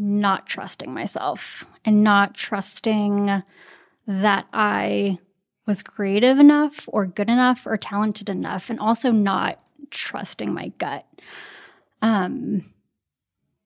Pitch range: 205-230 Hz